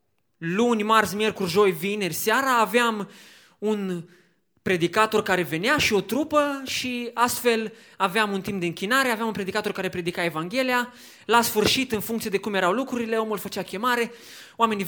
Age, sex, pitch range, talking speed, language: 20-39, male, 200-255 Hz, 155 wpm, Romanian